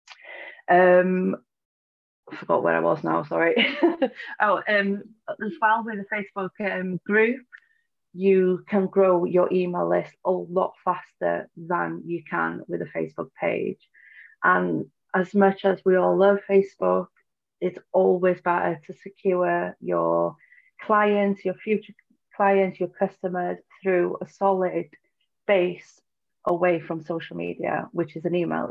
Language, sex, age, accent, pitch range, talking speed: English, female, 30-49, British, 165-195 Hz, 135 wpm